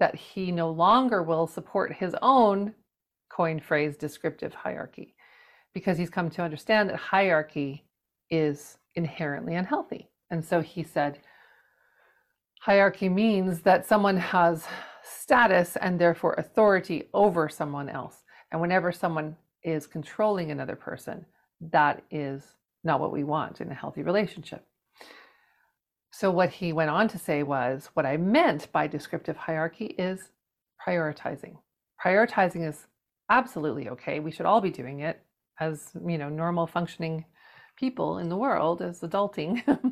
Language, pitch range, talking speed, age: English, 160-200 Hz, 140 wpm, 50-69